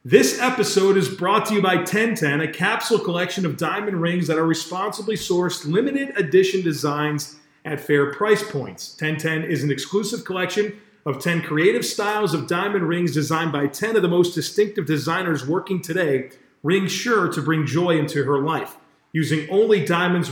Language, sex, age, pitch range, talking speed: English, male, 40-59, 155-200 Hz, 170 wpm